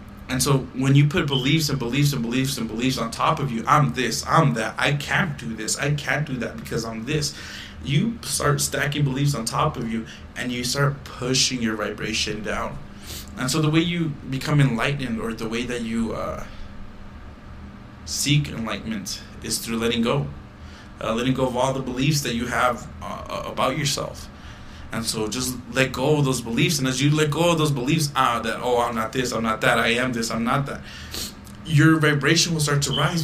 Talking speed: 210 wpm